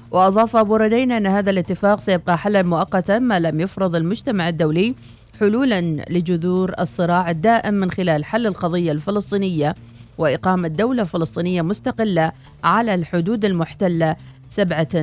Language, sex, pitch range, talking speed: Arabic, female, 165-210 Hz, 125 wpm